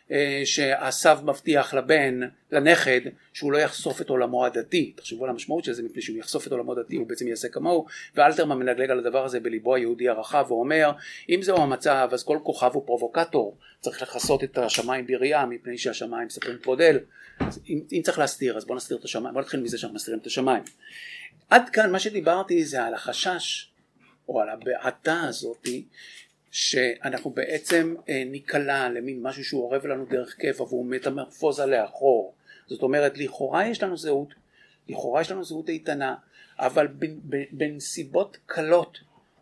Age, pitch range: 50-69, 130-190 Hz